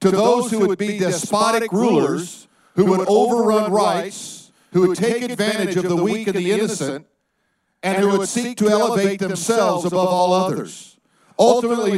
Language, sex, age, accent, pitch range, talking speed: English, male, 50-69, American, 185-220 Hz, 160 wpm